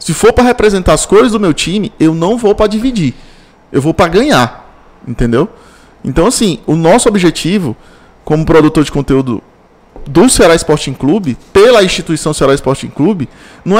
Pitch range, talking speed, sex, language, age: 150-205 Hz, 165 wpm, male, Portuguese, 20-39